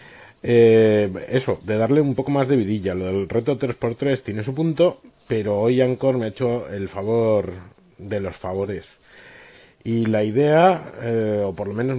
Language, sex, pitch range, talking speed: Spanish, male, 95-125 Hz, 175 wpm